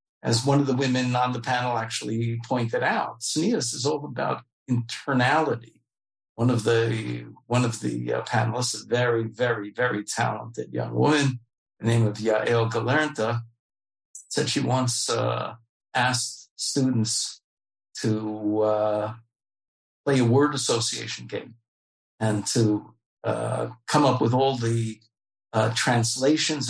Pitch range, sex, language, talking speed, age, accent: 115-150 Hz, male, English, 135 wpm, 50-69, American